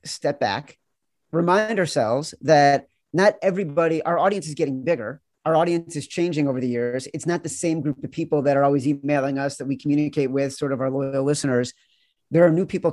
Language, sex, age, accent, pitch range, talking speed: English, male, 40-59, American, 135-160 Hz, 205 wpm